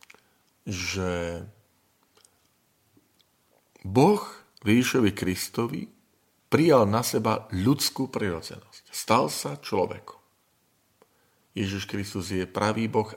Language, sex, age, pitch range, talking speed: Slovak, male, 50-69, 95-115 Hz, 75 wpm